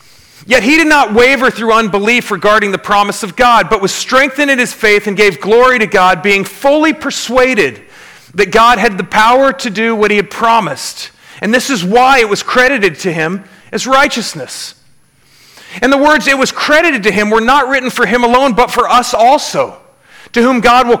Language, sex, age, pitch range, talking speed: English, male, 40-59, 205-255 Hz, 200 wpm